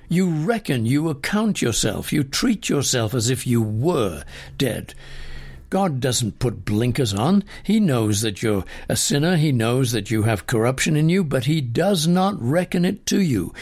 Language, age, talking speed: English, 60-79, 175 wpm